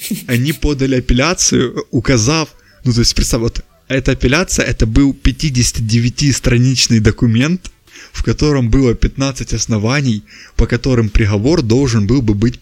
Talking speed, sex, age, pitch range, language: 130 wpm, male, 20-39, 105-130 Hz, Russian